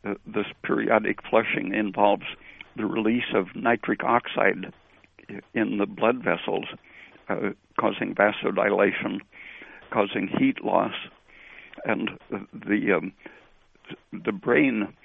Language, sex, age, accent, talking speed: English, male, 60-79, American, 95 wpm